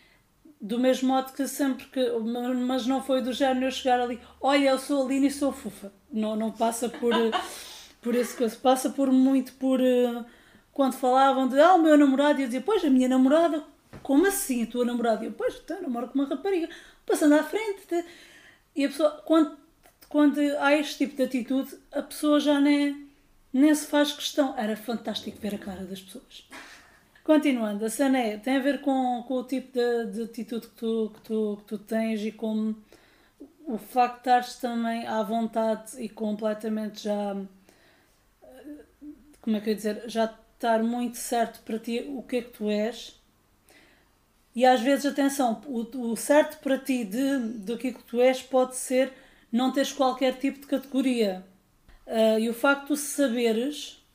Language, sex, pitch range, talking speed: Portuguese, female, 230-280 Hz, 190 wpm